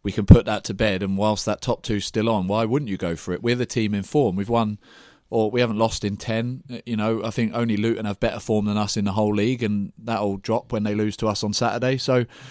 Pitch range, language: 105-120 Hz, English